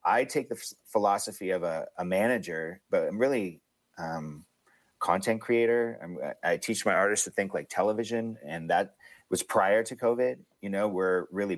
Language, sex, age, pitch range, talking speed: English, male, 30-49, 90-110 Hz, 165 wpm